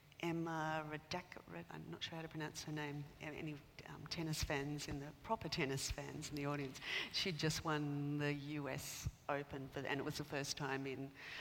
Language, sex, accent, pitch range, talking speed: English, female, Australian, 140-160 Hz, 200 wpm